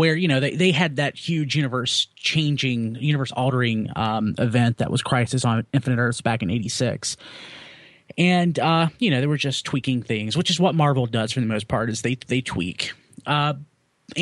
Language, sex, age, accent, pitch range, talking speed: English, male, 30-49, American, 120-155 Hz, 195 wpm